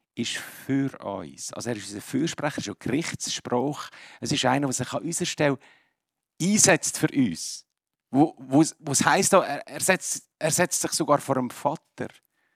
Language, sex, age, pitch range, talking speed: German, male, 50-69, 110-155 Hz, 170 wpm